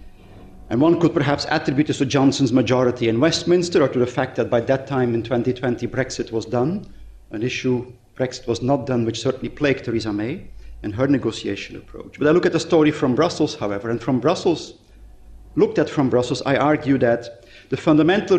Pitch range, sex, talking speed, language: 115-140 Hz, male, 195 wpm, English